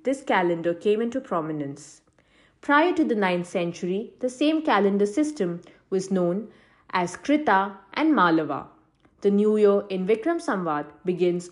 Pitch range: 175-235 Hz